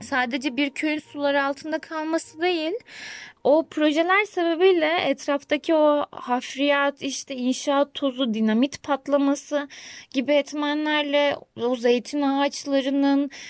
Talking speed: 100 wpm